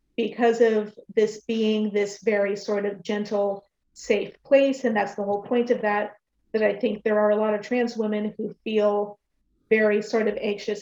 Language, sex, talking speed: English, female, 190 wpm